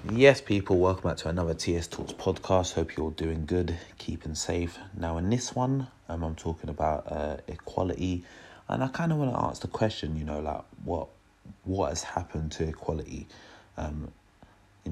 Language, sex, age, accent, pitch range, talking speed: English, male, 30-49, British, 80-95 Hz, 180 wpm